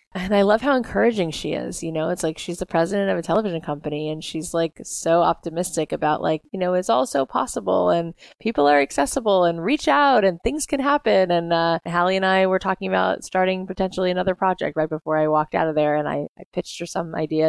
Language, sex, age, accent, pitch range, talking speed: English, female, 20-39, American, 160-195 Hz, 235 wpm